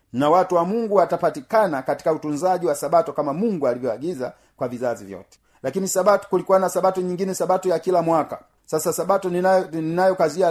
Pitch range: 145-185 Hz